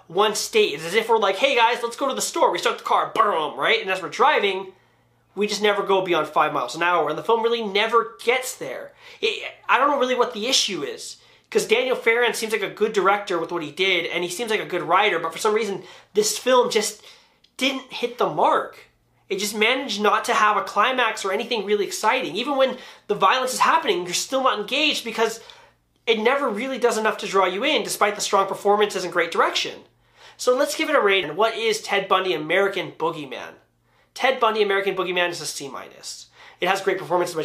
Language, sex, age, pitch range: English, male, 20-39, 180-255 Hz